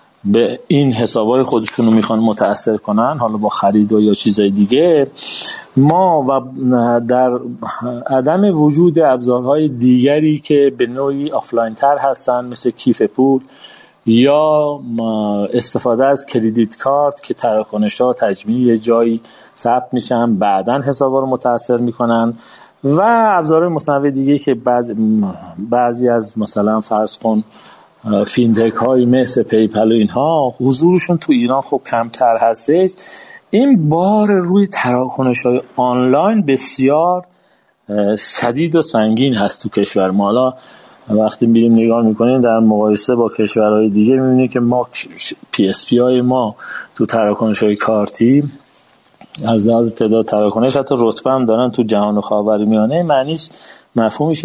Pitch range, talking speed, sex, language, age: 110-140 Hz, 125 wpm, male, Persian, 40-59